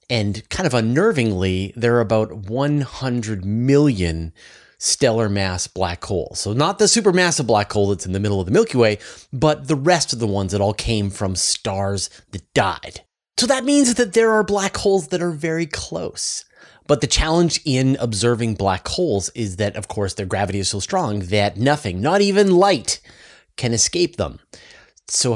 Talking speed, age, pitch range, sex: 180 wpm, 30-49, 100-145 Hz, male